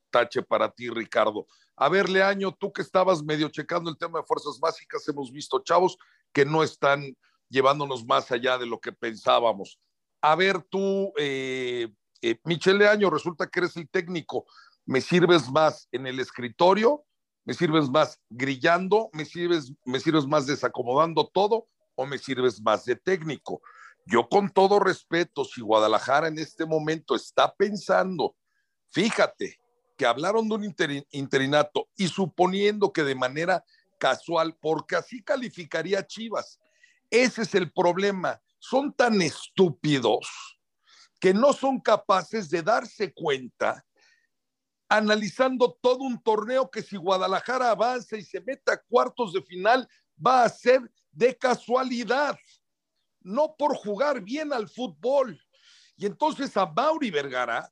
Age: 50-69